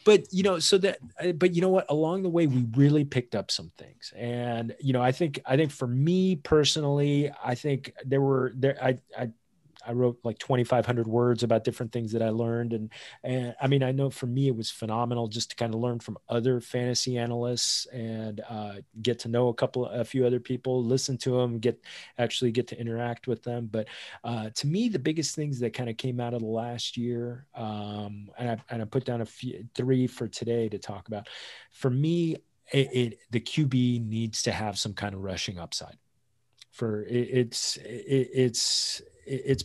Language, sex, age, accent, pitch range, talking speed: English, male, 30-49, American, 110-130 Hz, 210 wpm